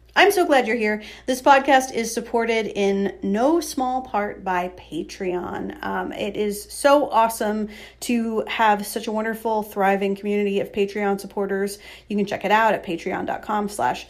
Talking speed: 160 wpm